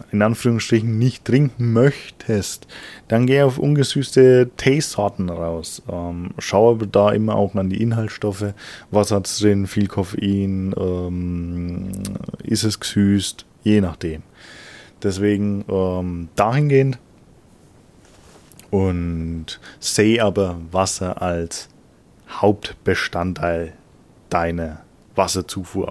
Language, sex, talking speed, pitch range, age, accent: German, male, 100 wpm, 90-105 Hz, 20-39, German